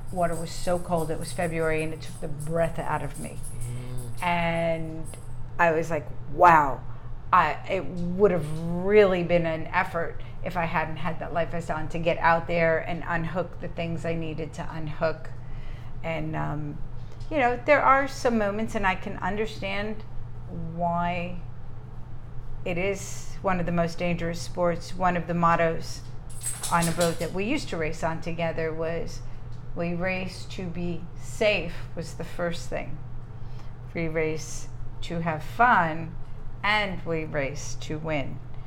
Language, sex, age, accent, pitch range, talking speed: English, female, 50-69, American, 125-170 Hz, 160 wpm